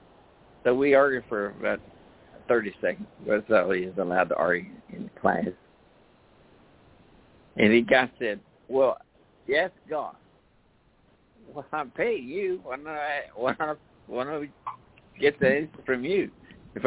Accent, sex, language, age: American, male, English, 60-79